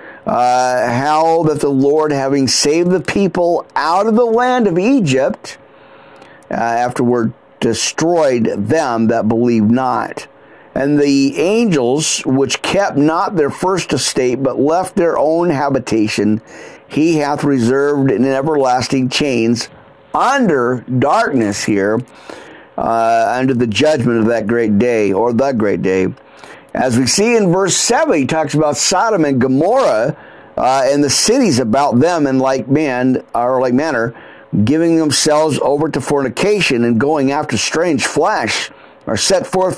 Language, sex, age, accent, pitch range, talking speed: English, male, 50-69, American, 125-155 Hz, 140 wpm